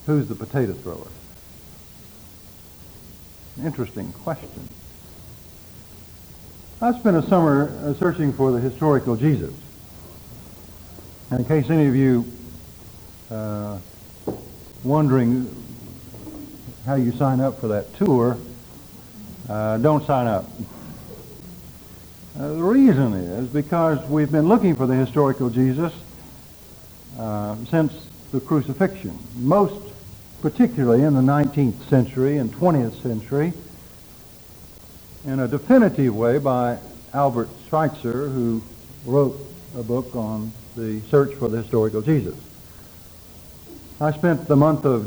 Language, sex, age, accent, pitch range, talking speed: English, male, 60-79, American, 115-150 Hz, 110 wpm